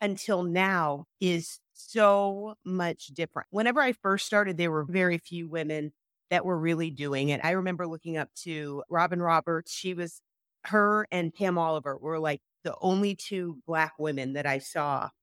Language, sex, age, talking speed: English, female, 30-49, 170 wpm